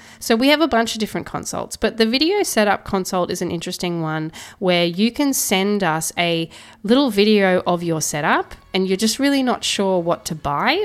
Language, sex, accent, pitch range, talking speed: English, female, Australian, 170-235 Hz, 205 wpm